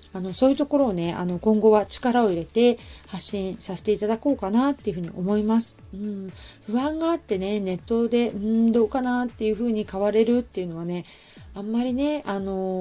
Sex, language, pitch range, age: female, Japanese, 185-230 Hz, 30-49